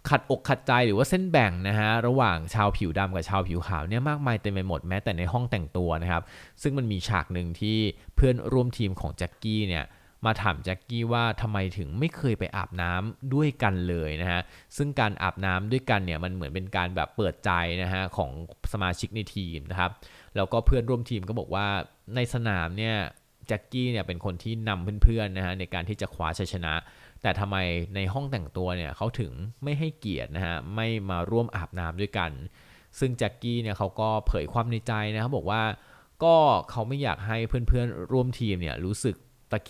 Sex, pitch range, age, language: male, 90-120 Hz, 20-39, Thai